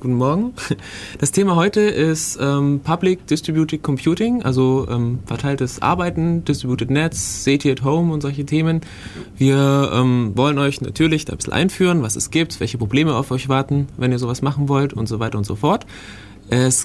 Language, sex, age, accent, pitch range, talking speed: German, male, 20-39, German, 110-150 Hz, 180 wpm